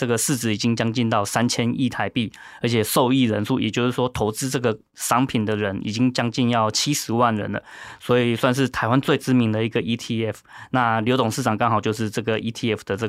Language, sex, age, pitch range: Chinese, male, 20-39, 110-125 Hz